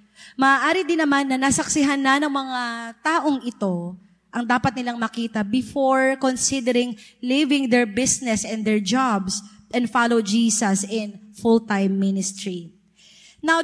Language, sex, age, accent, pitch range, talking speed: Filipino, female, 20-39, native, 215-270 Hz, 130 wpm